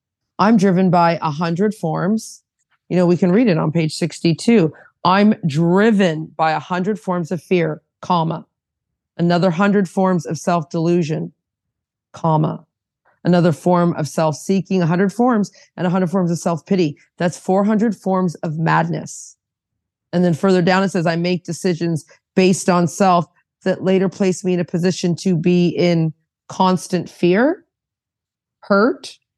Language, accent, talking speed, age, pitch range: English, American, 150 wpm, 40-59, 160-195 Hz